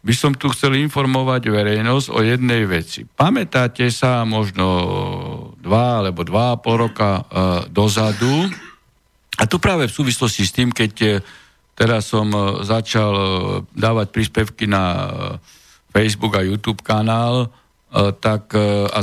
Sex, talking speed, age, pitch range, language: male, 120 wpm, 50-69, 100-120 Hz, Slovak